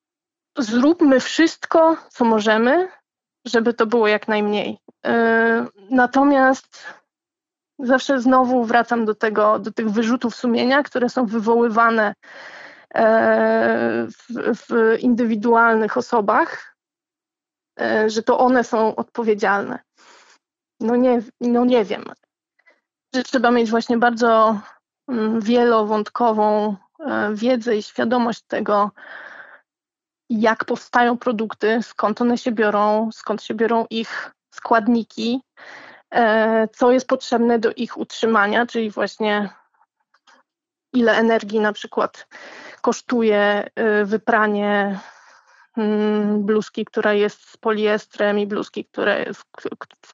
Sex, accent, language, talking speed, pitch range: female, native, Polish, 90 wpm, 215-255 Hz